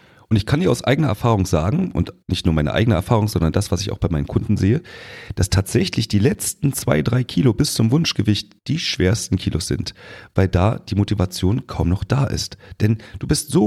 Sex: male